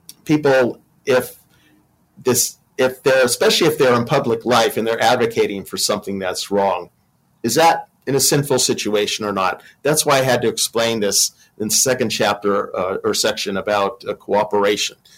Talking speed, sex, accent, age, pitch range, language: 170 wpm, male, American, 50-69, 105-130 Hz, English